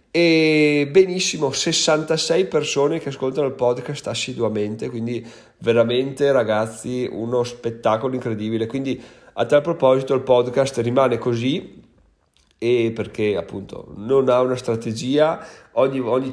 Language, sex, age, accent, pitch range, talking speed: Italian, male, 30-49, native, 110-130 Hz, 120 wpm